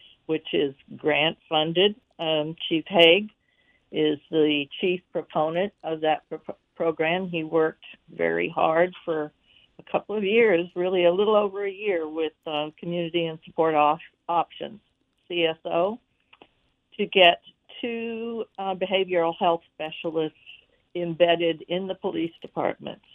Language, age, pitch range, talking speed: English, 60-79, 155-190 Hz, 125 wpm